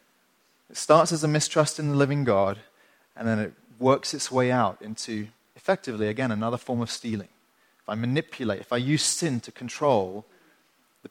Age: 30-49